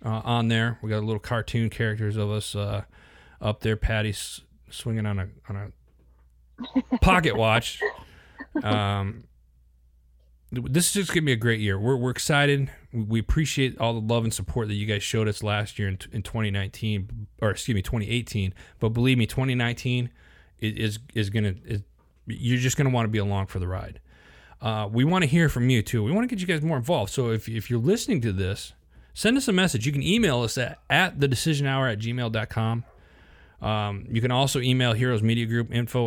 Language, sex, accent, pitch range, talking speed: English, male, American, 100-130 Hz, 200 wpm